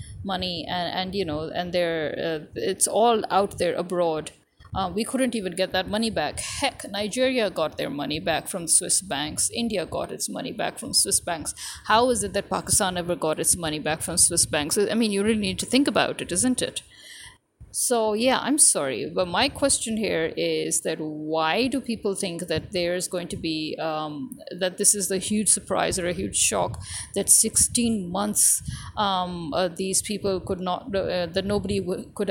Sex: female